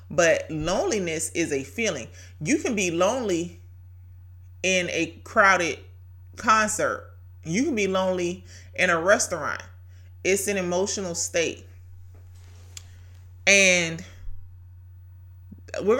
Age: 30-49